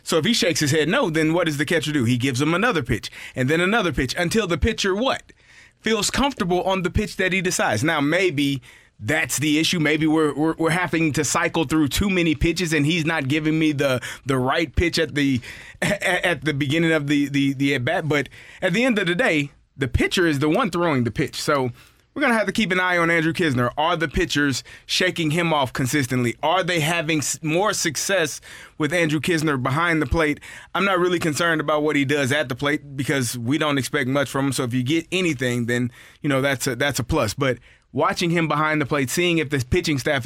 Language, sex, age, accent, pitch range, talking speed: English, male, 30-49, American, 135-170 Hz, 235 wpm